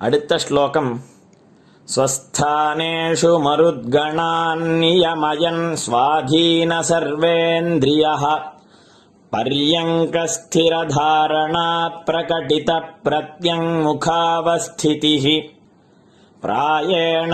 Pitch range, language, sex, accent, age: 155-165 Hz, Tamil, male, native, 30-49